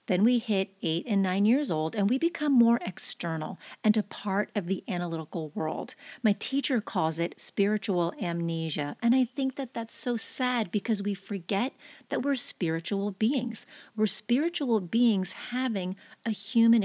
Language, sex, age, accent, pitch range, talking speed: English, female, 40-59, American, 190-245 Hz, 165 wpm